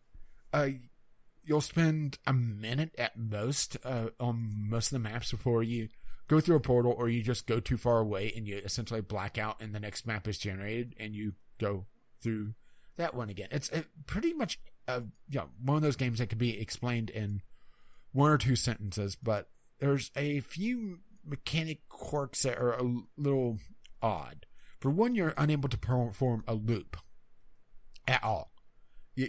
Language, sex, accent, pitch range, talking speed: English, male, American, 105-135 Hz, 175 wpm